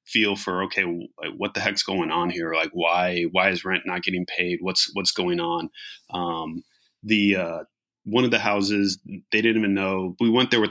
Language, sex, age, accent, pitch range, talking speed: English, male, 20-39, American, 90-100 Hz, 200 wpm